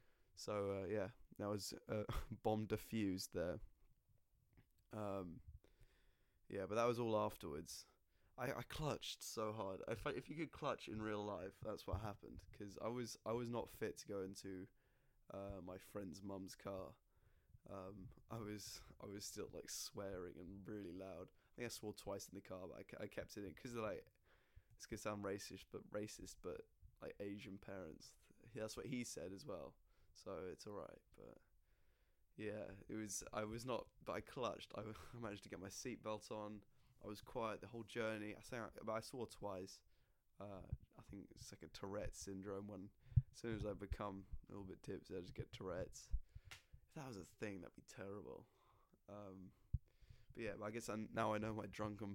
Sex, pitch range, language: male, 95-110 Hz, English